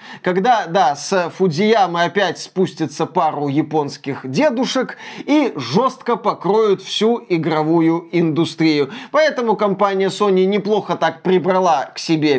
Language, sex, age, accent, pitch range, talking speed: Russian, male, 20-39, native, 160-200 Hz, 110 wpm